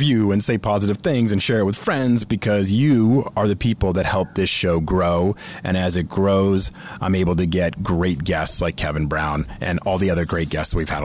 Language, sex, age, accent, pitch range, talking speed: English, male, 30-49, American, 90-120 Hz, 225 wpm